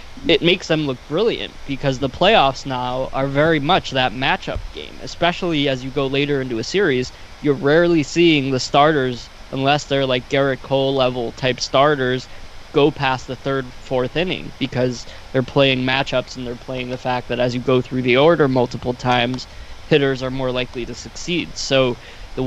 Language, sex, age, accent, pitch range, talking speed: English, male, 20-39, American, 125-145 Hz, 180 wpm